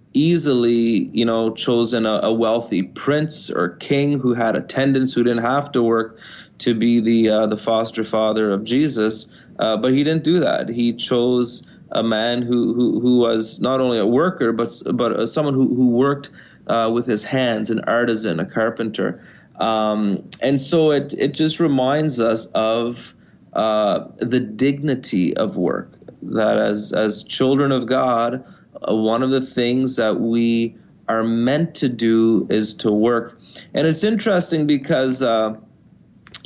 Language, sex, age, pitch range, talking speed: English, male, 30-49, 115-140 Hz, 160 wpm